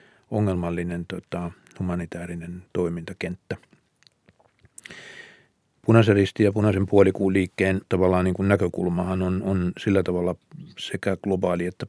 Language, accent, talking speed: Finnish, native, 105 wpm